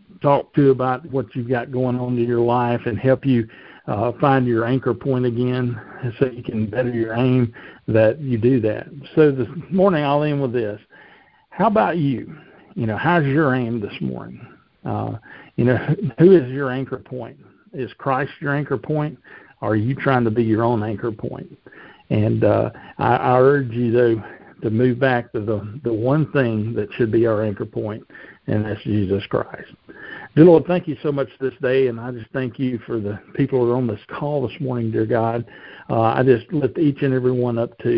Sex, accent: male, American